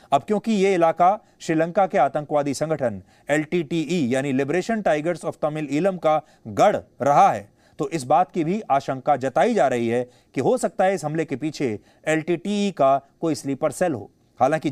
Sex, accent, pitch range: male, Indian, 140-200 Hz